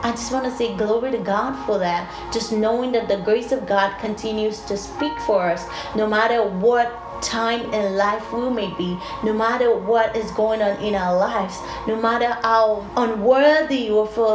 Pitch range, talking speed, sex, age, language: 215-260 Hz, 190 wpm, female, 30-49, English